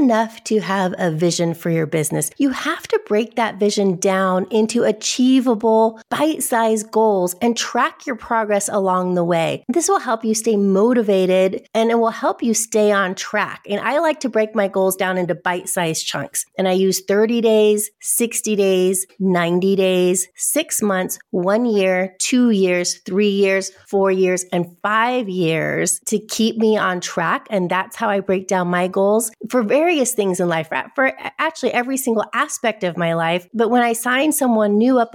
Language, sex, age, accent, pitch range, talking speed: English, female, 30-49, American, 185-230 Hz, 185 wpm